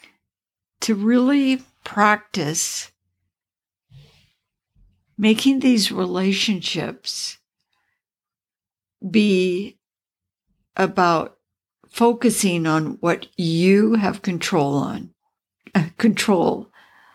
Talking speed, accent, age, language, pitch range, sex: 55 wpm, American, 60-79, English, 165-215 Hz, female